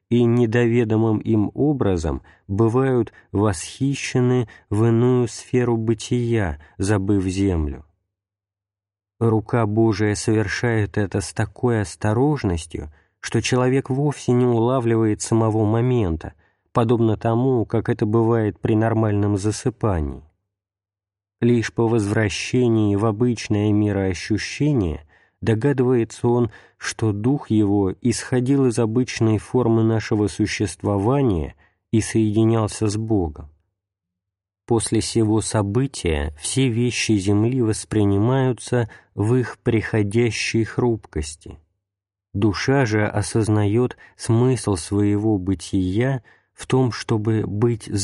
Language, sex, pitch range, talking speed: Russian, male, 100-120 Hz, 95 wpm